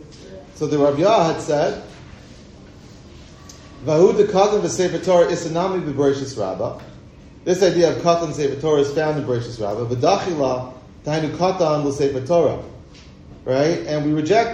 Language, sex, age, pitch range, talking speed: English, male, 40-59, 120-170 Hz, 95 wpm